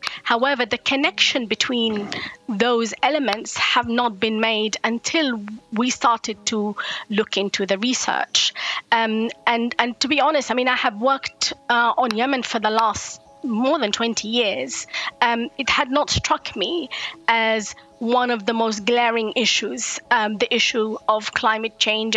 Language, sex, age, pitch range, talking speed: English, female, 20-39, 225-275 Hz, 155 wpm